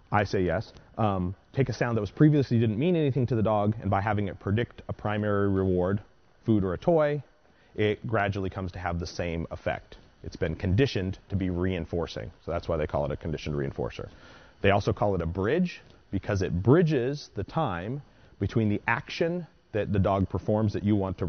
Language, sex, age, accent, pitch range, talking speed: English, male, 30-49, American, 85-110 Hz, 205 wpm